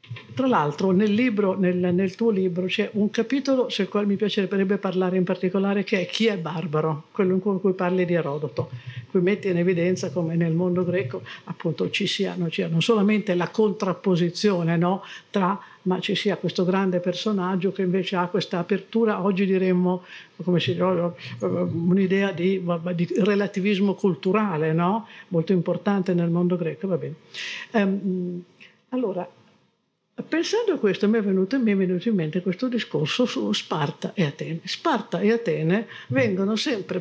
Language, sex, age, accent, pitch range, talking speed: Italian, female, 50-69, native, 175-210 Hz, 165 wpm